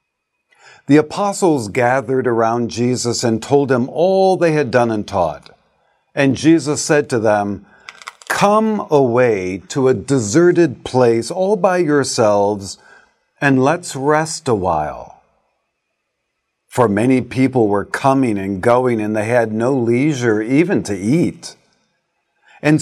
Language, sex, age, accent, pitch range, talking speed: English, male, 50-69, American, 110-150 Hz, 130 wpm